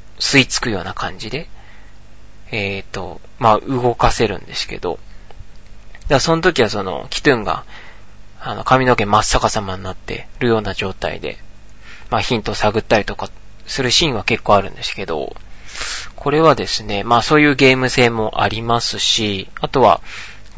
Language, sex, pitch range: Japanese, male, 100-130 Hz